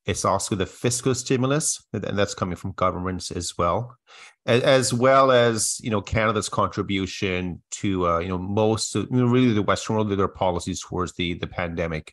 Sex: male